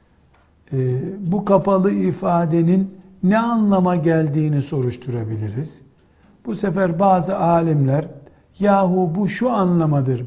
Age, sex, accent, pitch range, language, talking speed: 60-79, male, native, 150-190 Hz, Turkish, 90 wpm